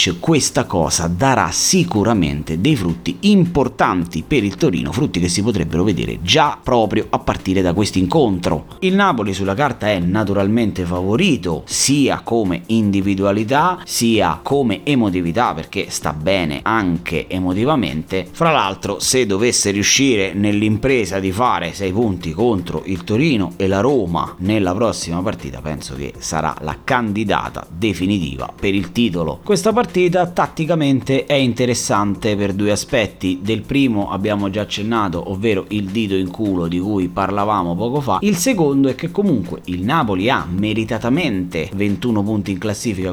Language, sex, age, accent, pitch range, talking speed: Italian, male, 30-49, native, 95-130 Hz, 145 wpm